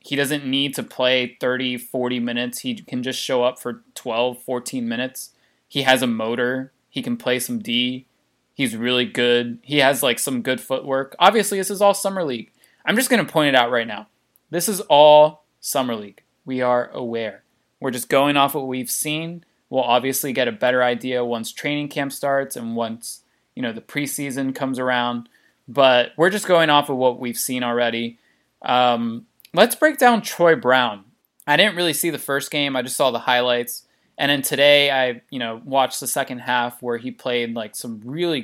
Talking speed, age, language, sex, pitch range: 200 wpm, 20-39, English, male, 120-145 Hz